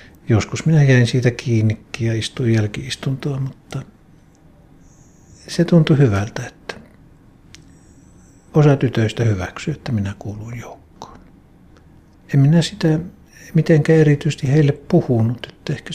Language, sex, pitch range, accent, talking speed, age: Finnish, male, 105-140 Hz, native, 105 wpm, 60-79